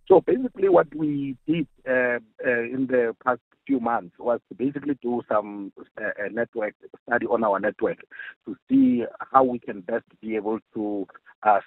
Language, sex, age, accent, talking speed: English, male, 50-69, South African, 165 wpm